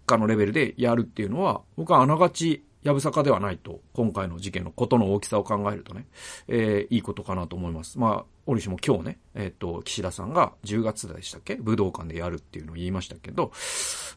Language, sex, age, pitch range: Japanese, male, 40-59, 95-145 Hz